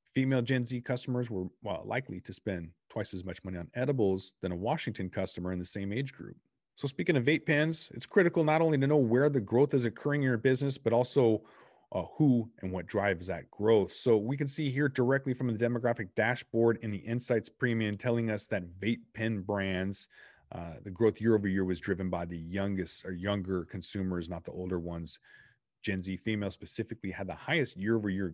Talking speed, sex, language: 205 wpm, male, English